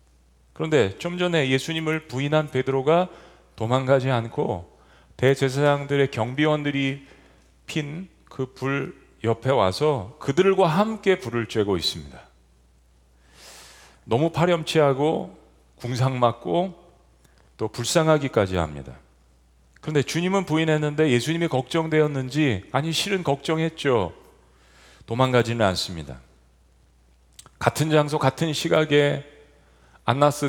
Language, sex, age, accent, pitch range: Korean, male, 40-59, native, 95-155 Hz